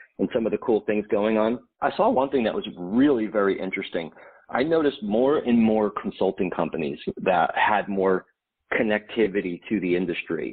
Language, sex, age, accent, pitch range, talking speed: English, male, 40-59, American, 95-110 Hz, 175 wpm